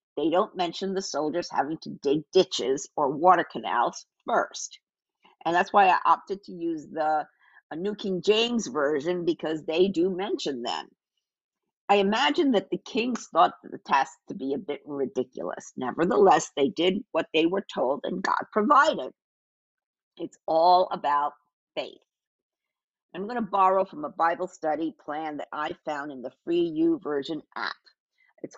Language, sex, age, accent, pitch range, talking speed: English, female, 50-69, American, 155-215 Hz, 160 wpm